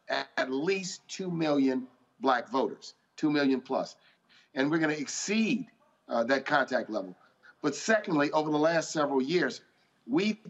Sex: male